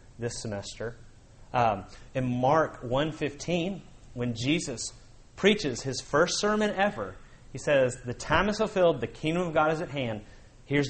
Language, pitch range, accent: English, 120-160 Hz, American